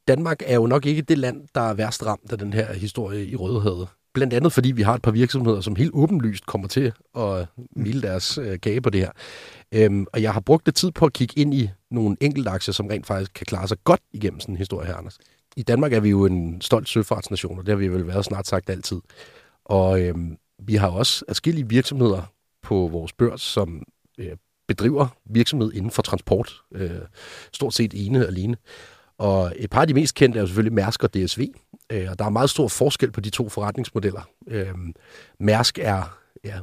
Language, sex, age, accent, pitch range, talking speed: Danish, male, 40-59, native, 100-125 Hz, 215 wpm